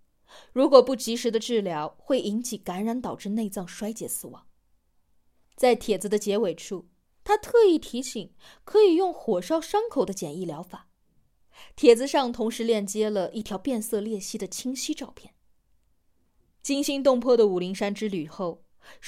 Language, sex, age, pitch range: Chinese, female, 20-39, 195-285 Hz